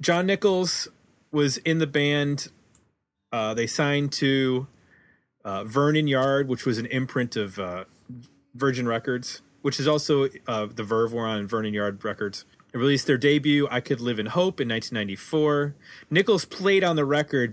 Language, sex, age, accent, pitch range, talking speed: English, male, 30-49, American, 110-145 Hz, 165 wpm